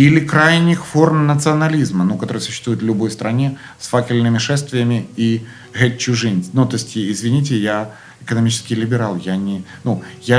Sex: male